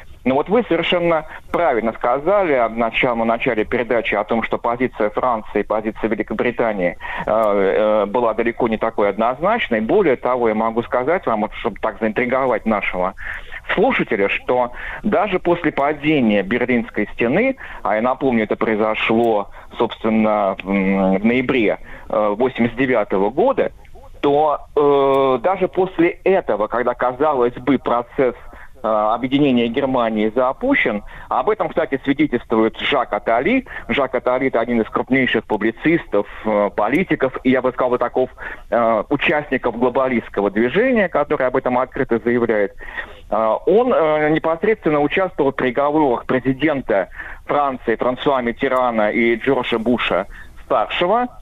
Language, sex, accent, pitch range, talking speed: Russian, male, native, 115-150 Hz, 125 wpm